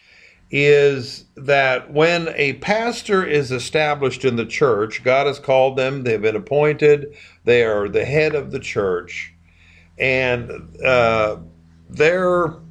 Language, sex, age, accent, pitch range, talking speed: English, male, 50-69, American, 110-155 Hz, 125 wpm